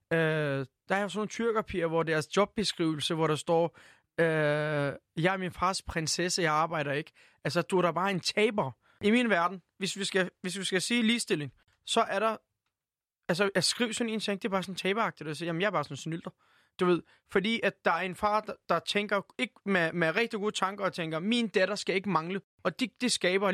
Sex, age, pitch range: male, 20-39, 160-200 Hz